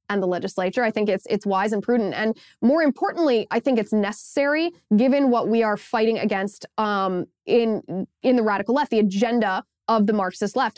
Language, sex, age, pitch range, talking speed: English, female, 10-29, 210-260 Hz, 195 wpm